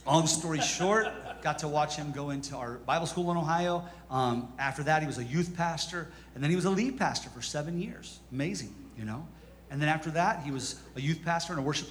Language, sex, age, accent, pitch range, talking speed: English, male, 40-59, American, 140-205 Hz, 235 wpm